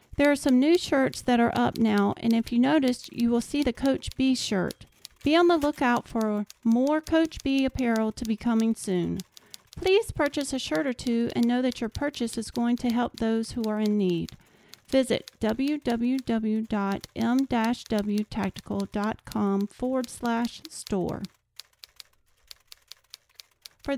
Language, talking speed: English, 150 wpm